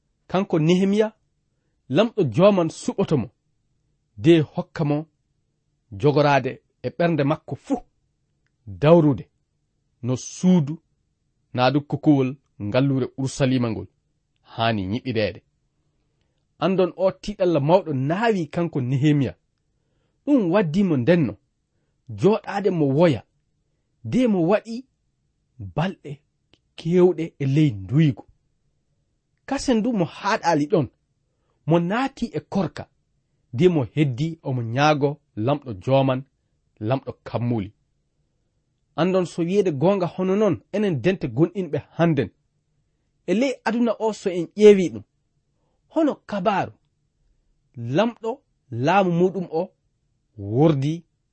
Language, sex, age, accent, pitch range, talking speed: English, male, 40-59, South African, 135-180 Hz, 90 wpm